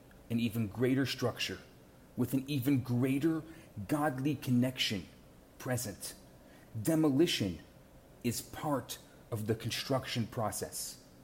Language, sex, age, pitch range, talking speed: English, male, 30-49, 120-165 Hz, 95 wpm